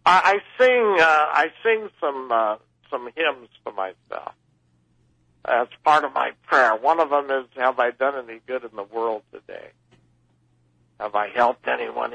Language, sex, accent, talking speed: English, male, American, 165 wpm